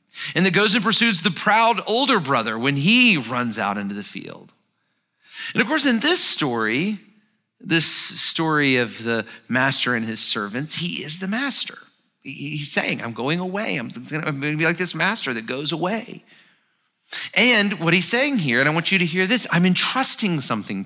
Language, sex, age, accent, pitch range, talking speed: English, male, 40-59, American, 135-200 Hz, 185 wpm